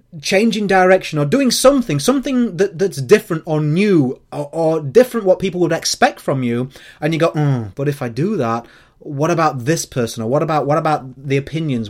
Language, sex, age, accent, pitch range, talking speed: English, male, 30-49, British, 130-185 Hz, 200 wpm